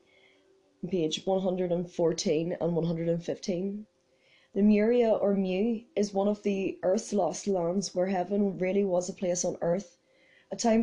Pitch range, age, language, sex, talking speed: 190-210 Hz, 20-39, English, female, 135 wpm